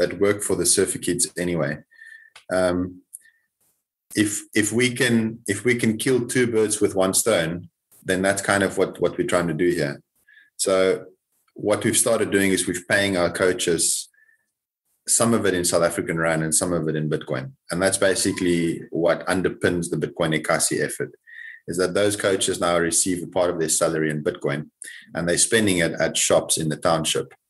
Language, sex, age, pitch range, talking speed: English, male, 30-49, 90-125 Hz, 190 wpm